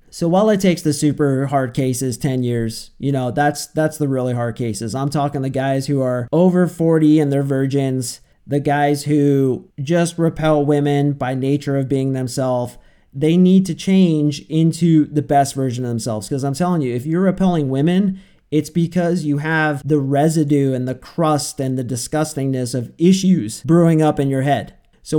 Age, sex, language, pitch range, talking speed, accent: 40-59, male, English, 135-165 Hz, 185 wpm, American